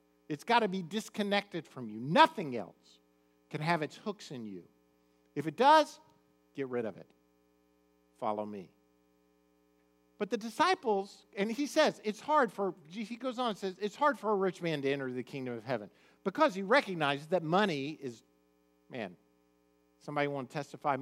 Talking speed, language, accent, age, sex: 175 wpm, English, American, 50-69, male